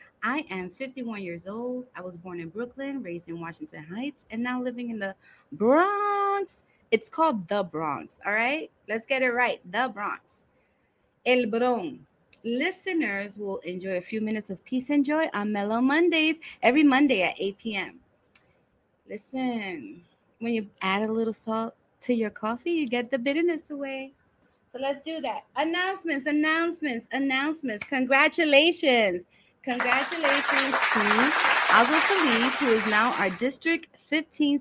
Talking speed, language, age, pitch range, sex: 145 wpm, English, 30-49, 210-295 Hz, female